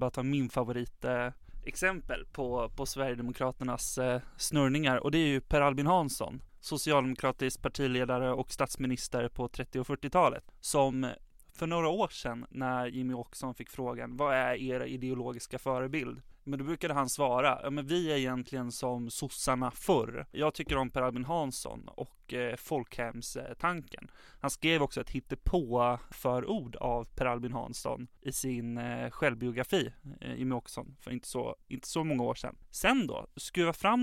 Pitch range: 125-145 Hz